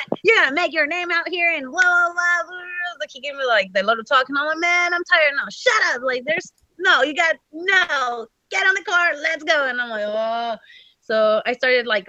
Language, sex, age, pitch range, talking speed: English, female, 20-39, 205-290 Hz, 250 wpm